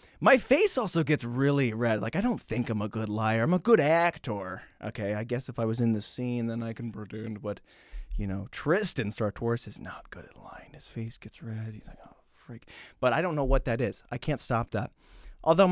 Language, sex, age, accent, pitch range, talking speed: English, male, 20-39, American, 115-180 Hz, 235 wpm